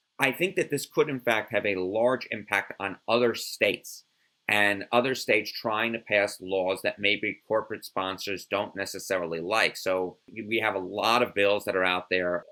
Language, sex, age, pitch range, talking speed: English, male, 30-49, 95-115 Hz, 185 wpm